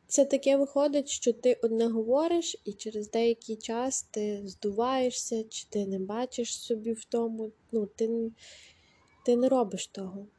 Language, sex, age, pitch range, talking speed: Ukrainian, female, 20-39, 200-235 Hz, 150 wpm